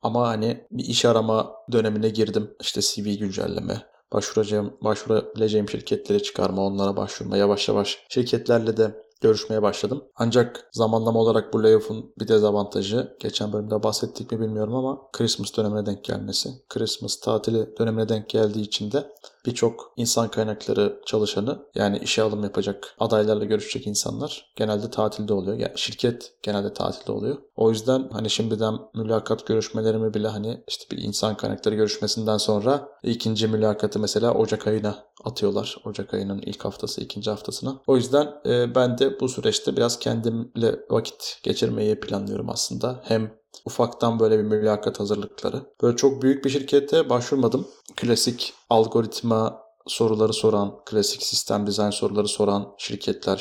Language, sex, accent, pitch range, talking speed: Turkish, male, native, 105-120 Hz, 140 wpm